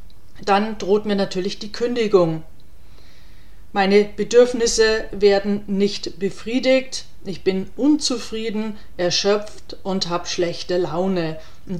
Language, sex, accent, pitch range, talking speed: German, female, German, 190-230 Hz, 100 wpm